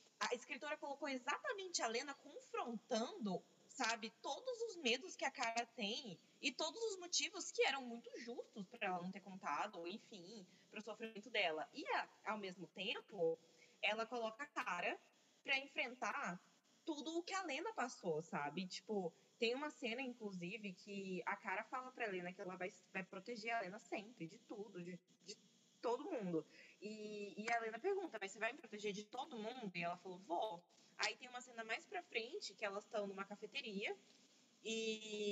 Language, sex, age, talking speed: Portuguese, female, 20-39, 180 wpm